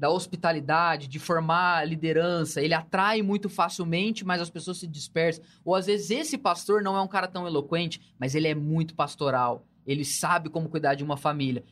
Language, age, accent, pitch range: Portuguese, 20-39, Brazilian, 150-190 Hz